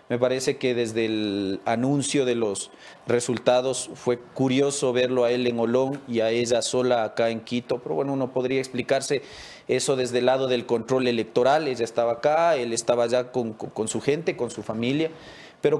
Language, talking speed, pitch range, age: English, 185 wpm, 120-145 Hz, 40-59